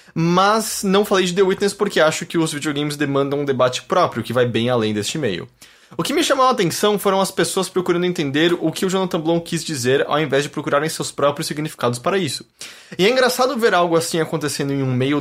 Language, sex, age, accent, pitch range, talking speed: English, male, 20-39, Brazilian, 135-175 Hz, 230 wpm